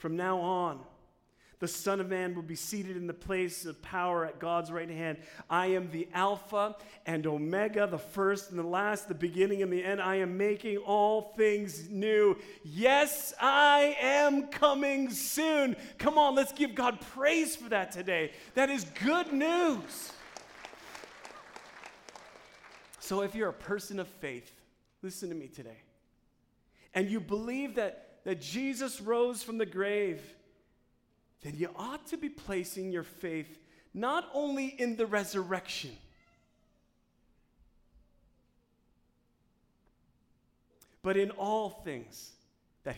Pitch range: 175-270 Hz